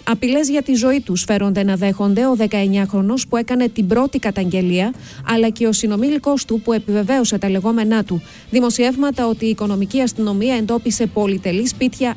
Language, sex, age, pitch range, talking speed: Greek, female, 30-49, 200-240 Hz, 170 wpm